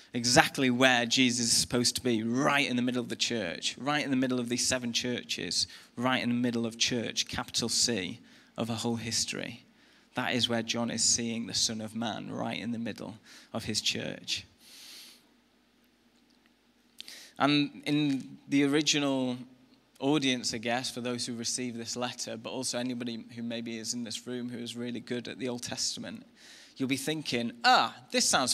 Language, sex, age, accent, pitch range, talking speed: English, male, 20-39, British, 120-150 Hz, 185 wpm